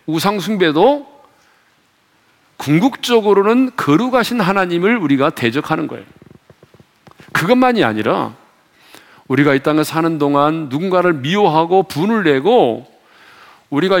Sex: male